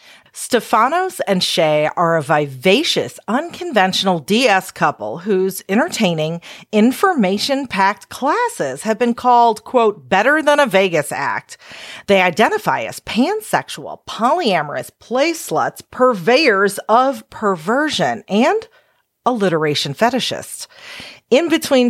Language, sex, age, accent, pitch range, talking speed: English, female, 40-59, American, 175-255 Hz, 105 wpm